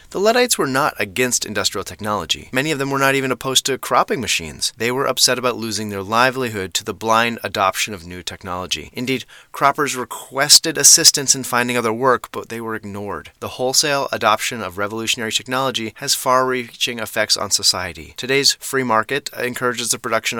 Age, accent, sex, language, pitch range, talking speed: 30-49, American, male, English, 100-130 Hz, 175 wpm